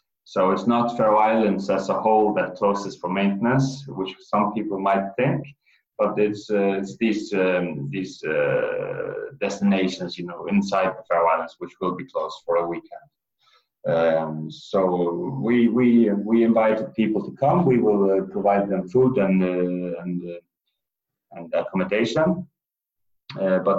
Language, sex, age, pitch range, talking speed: English, male, 30-49, 95-115 Hz, 155 wpm